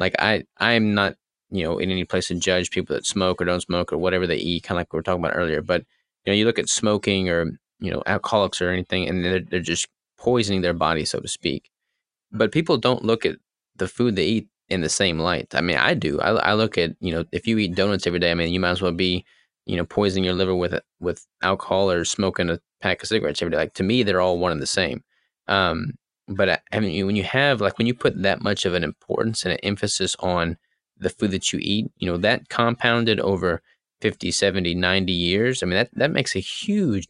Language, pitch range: English, 90-105 Hz